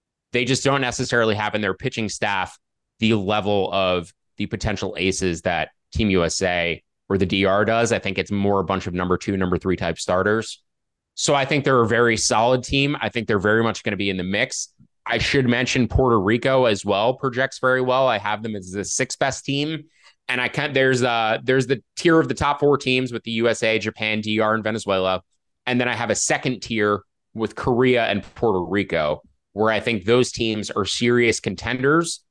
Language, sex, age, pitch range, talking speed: English, male, 20-39, 100-125 Hz, 210 wpm